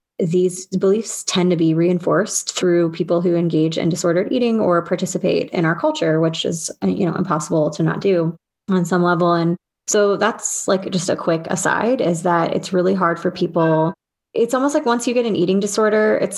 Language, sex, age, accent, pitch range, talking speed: English, female, 20-39, American, 165-195 Hz, 200 wpm